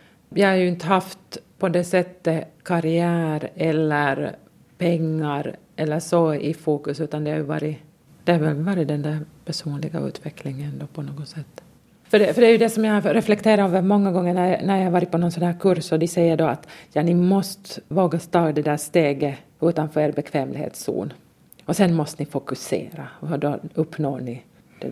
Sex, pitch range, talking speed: female, 155-180 Hz, 185 wpm